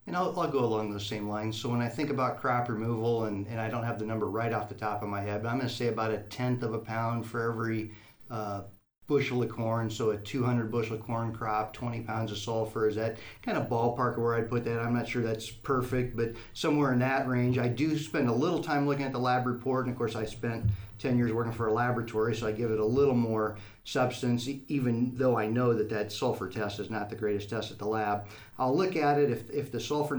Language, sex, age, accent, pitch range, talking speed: English, male, 40-59, American, 110-125 Hz, 260 wpm